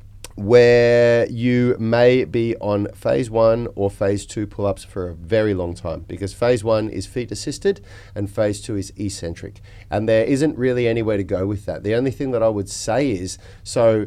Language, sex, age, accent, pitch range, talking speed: English, male, 30-49, Australian, 100-120 Hz, 190 wpm